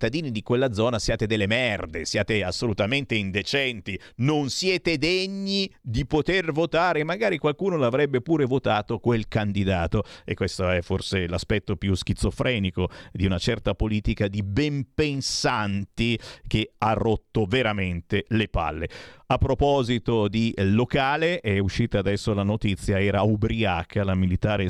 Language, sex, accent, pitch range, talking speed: Italian, male, native, 95-125 Hz, 135 wpm